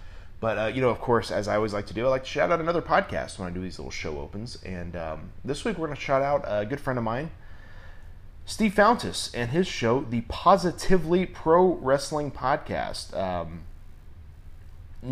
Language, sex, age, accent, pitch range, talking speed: English, male, 30-49, American, 85-115 Hz, 205 wpm